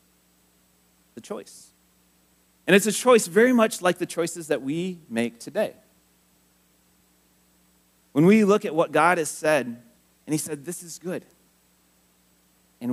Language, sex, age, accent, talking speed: English, male, 30-49, American, 140 wpm